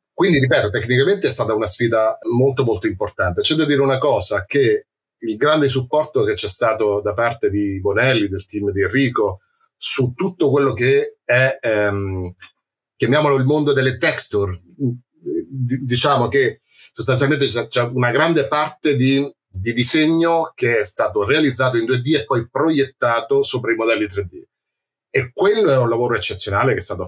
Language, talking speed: Italian, 160 wpm